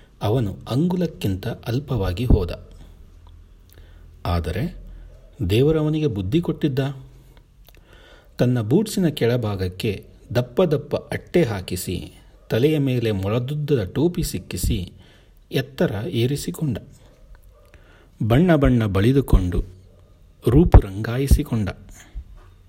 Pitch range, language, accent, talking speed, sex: 95-135 Hz, Kannada, native, 70 wpm, male